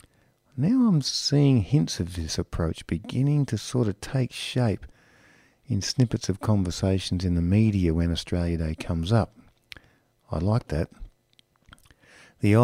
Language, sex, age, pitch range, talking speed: English, male, 50-69, 85-115 Hz, 140 wpm